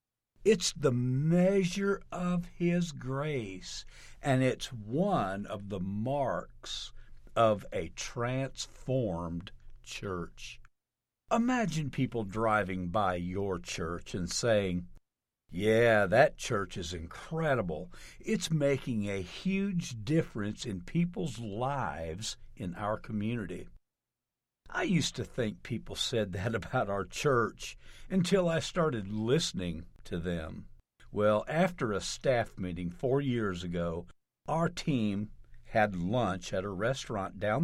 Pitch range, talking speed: 95-155 Hz, 115 wpm